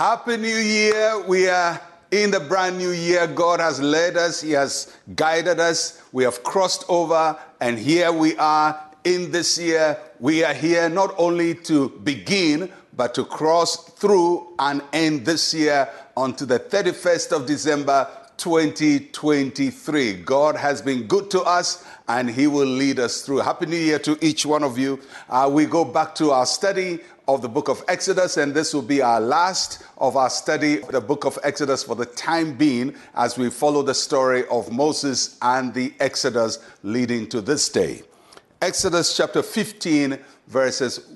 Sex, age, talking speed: male, 60-79, 170 wpm